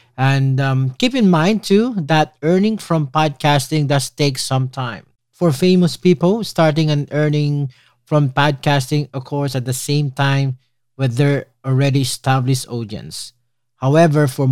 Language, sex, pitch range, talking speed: English, male, 125-155 Hz, 145 wpm